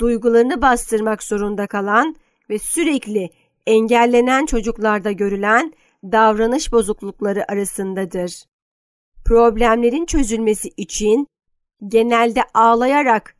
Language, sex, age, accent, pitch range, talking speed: Turkish, female, 50-69, native, 205-240 Hz, 75 wpm